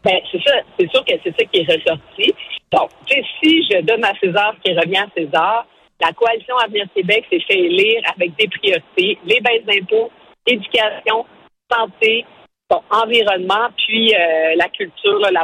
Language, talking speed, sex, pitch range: French, 175 wpm, female, 170-245 Hz